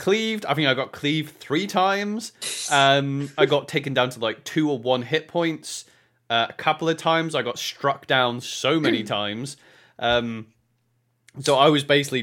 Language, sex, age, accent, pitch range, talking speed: English, male, 20-39, British, 115-155 Hz, 180 wpm